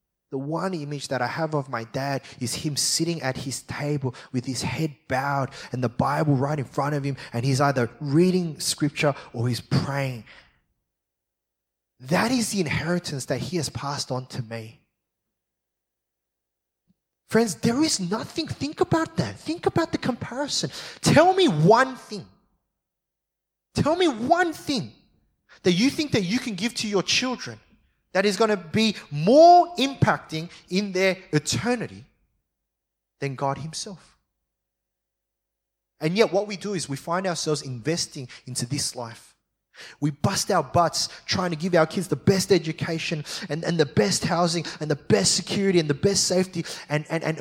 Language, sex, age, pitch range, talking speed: English, male, 20-39, 140-195 Hz, 160 wpm